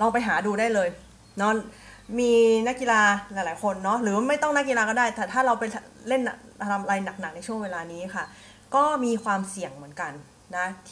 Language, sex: Thai, female